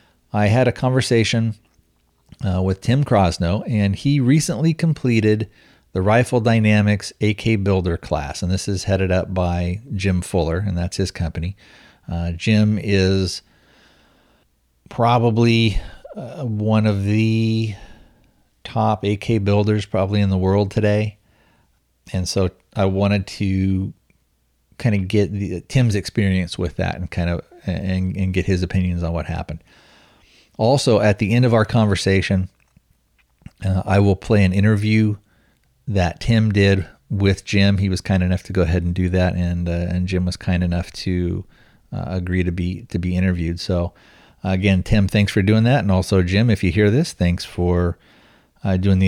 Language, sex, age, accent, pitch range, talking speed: English, male, 40-59, American, 90-110 Hz, 165 wpm